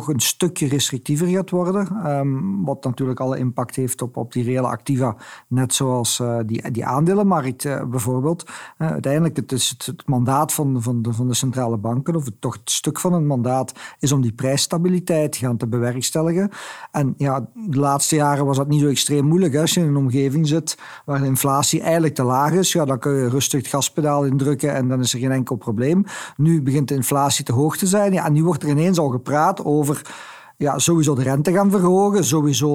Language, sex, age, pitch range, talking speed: Dutch, male, 50-69, 130-160 Hz, 215 wpm